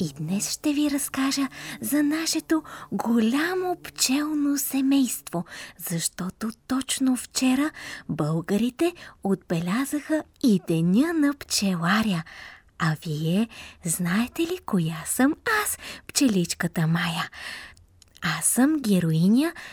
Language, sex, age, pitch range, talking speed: Bulgarian, female, 20-39, 185-275 Hz, 95 wpm